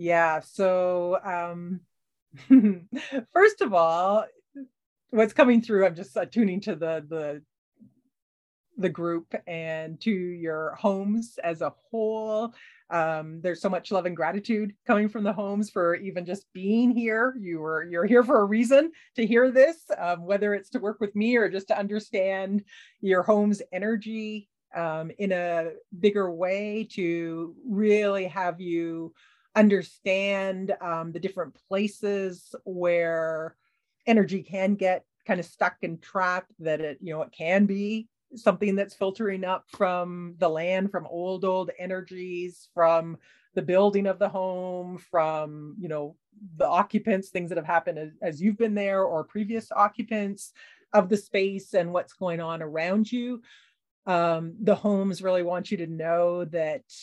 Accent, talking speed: American, 155 wpm